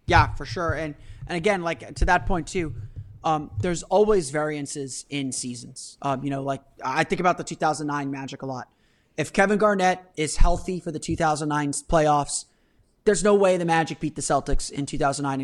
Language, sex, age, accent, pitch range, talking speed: English, male, 30-49, American, 145-185 Hz, 185 wpm